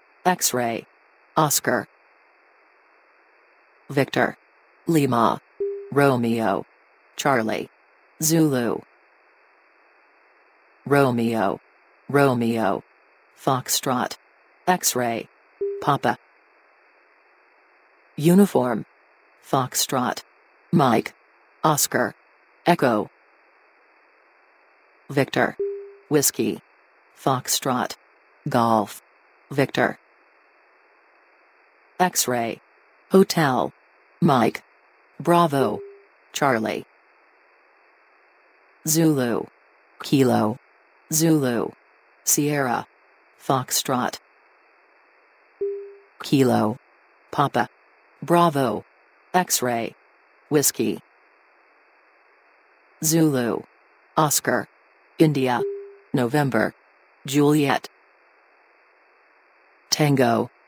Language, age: English, 40-59